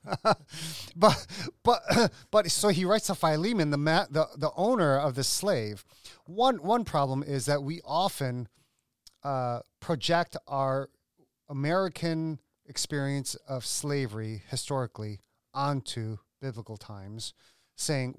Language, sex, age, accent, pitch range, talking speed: English, male, 30-49, American, 125-165 Hz, 115 wpm